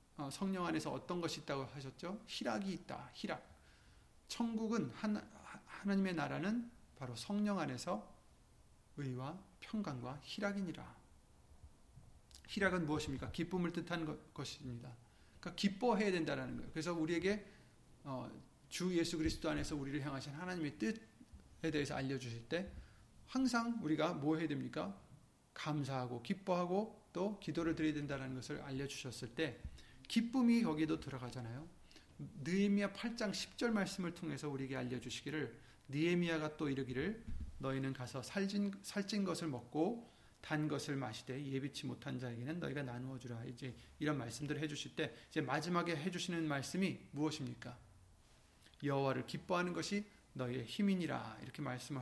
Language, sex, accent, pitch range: Korean, male, native, 135-185 Hz